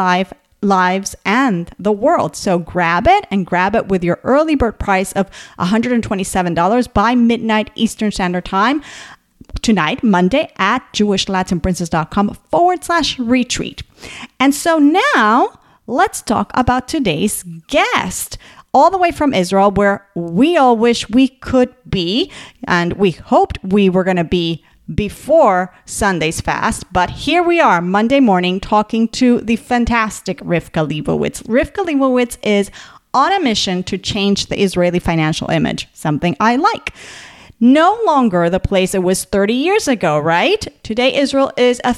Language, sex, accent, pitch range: English, female, American, 185-255 Hz